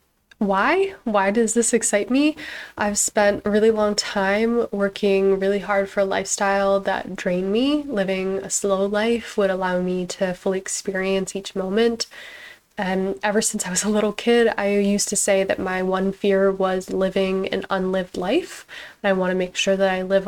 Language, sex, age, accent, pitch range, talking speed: English, female, 10-29, American, 195-215 Hz, 185 wpm